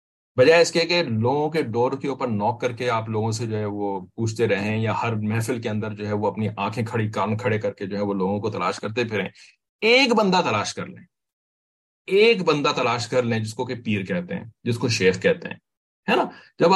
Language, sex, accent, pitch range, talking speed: English, male, Indian, 115-170 Hz, 220 wpm